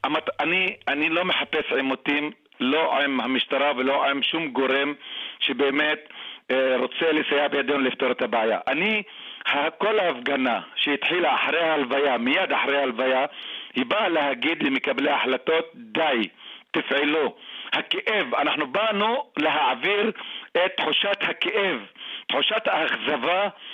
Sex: male